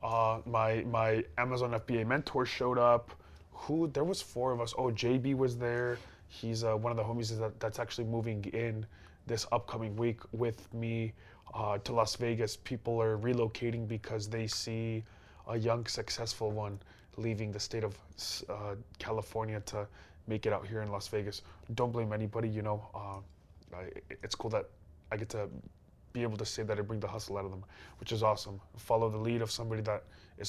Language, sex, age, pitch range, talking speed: English, male, 20-39, 105-120 Hz, 190 wpm